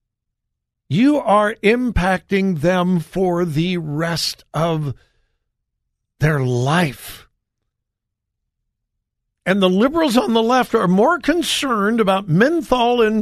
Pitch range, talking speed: 140-195 Hz, 100 wpm